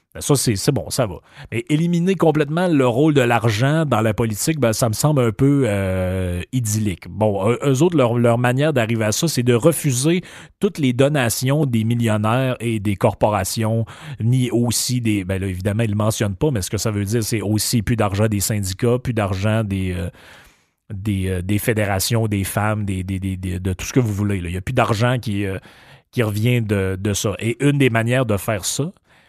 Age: 30-49